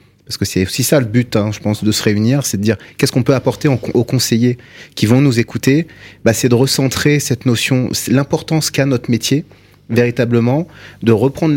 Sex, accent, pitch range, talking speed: male, French, 110-135 Hz, 205 wpm